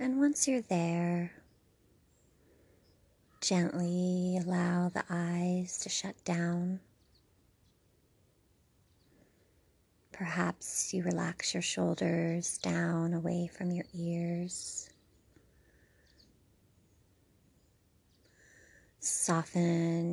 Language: English